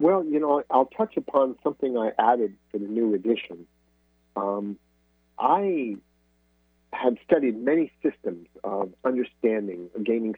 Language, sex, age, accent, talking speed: English, male, 50-69, American, 125 wpm